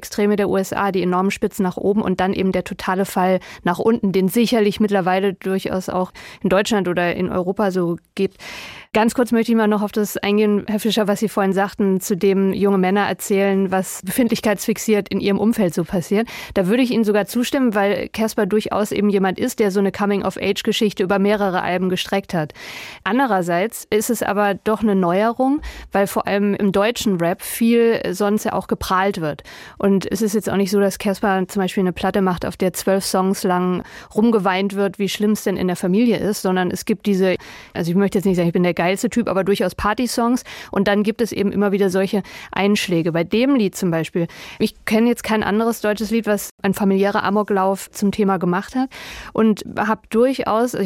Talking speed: 210 wpm